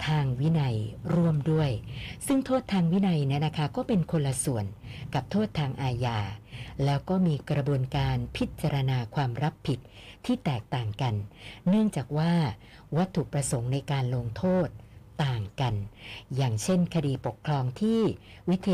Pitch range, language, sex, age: 120-170 Hz, Thai, female, 60-79